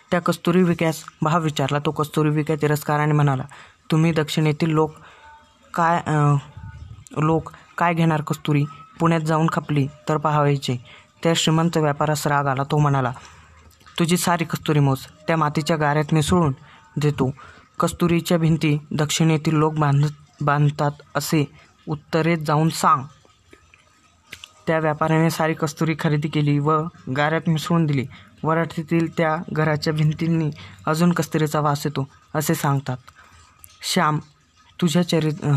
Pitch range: 145-165 Hz